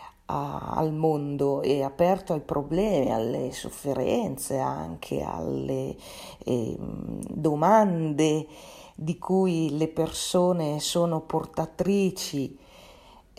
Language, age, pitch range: Italian, 40-59, 145-180 Hz